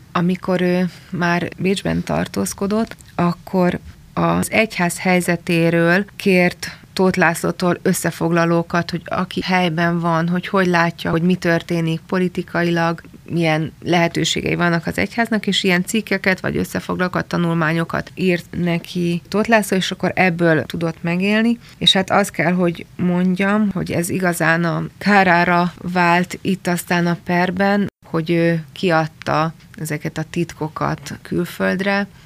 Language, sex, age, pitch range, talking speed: Hungarian, female, 30-49, 165-180 Hz, 120 wpm